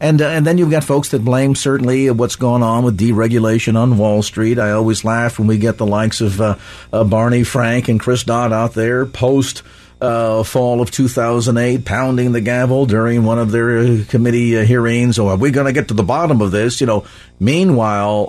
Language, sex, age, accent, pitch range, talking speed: English, male, 50-69, American, 100-130 Hz, 225 wpm